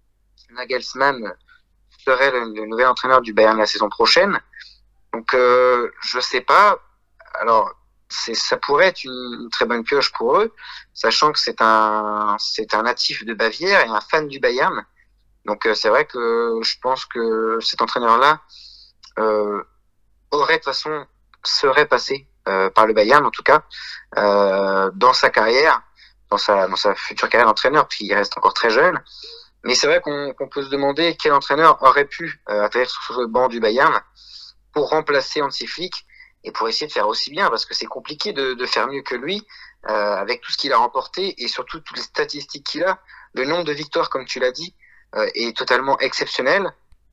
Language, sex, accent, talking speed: French, male, French, 185 wpm